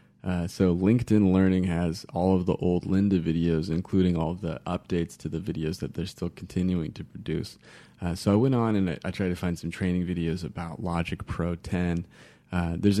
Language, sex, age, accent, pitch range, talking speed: English, male, 20-39, American, 85-95 Hz, 210 wpm